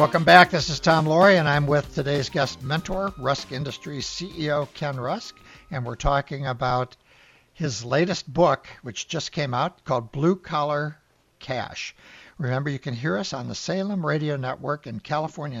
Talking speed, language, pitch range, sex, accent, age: 170 wpm, English, 130-160 Hz, male, American, 60-79